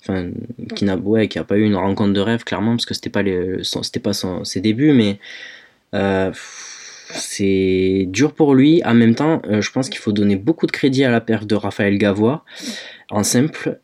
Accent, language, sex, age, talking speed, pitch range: French, French, male, 20-39, 220 wpm, 100-125 Hz